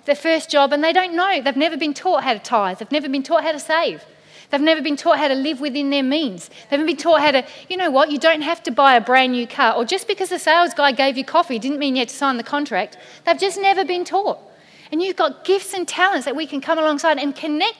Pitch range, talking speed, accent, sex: 250-325 Hz, 285 wpm, Australian, female